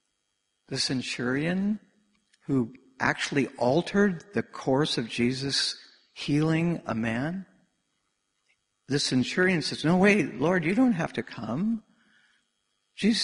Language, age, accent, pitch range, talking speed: Danish, 60-79, American, 125-190 Hz, 110 wpm